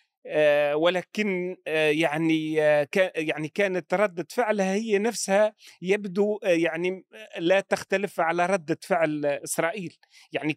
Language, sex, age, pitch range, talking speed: Arabic, male, 40-59, 155-190 Hz, 95 wpm